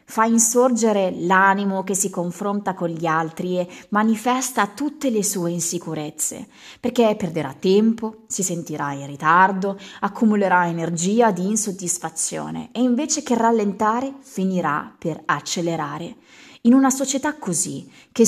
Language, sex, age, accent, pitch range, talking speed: Italian, female, 20-39, native, 170-220 Hz, 125 wpm